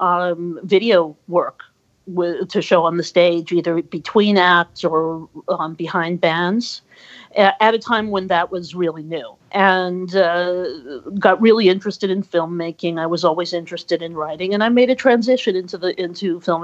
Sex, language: female, English